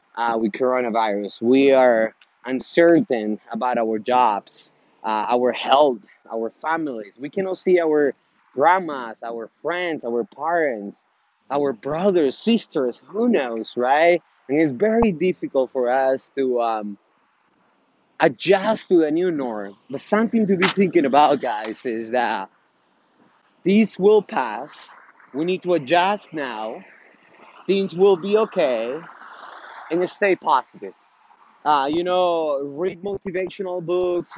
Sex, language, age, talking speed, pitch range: male, English, 30-49, 125 wpm, 125-195 Hz